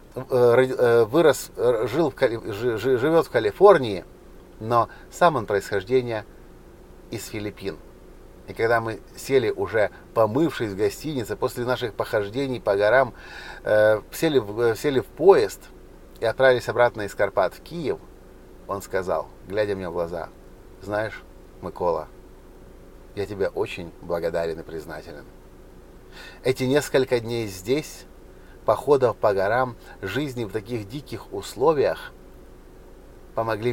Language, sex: Russian, male